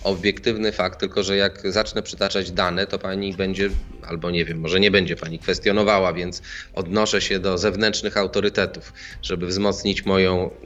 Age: 20-39